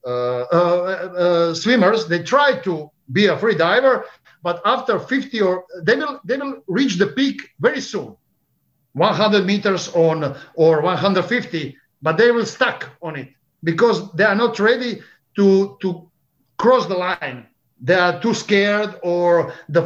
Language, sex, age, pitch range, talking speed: English, male, 60-79, 165-225 Hz, 165 wpm